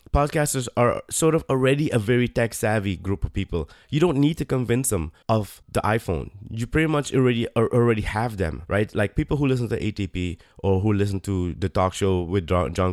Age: 20-39